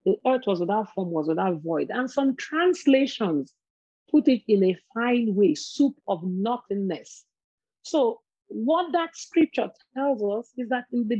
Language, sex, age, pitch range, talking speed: English, female, 40-59, 195-270 Hz, 160 wpm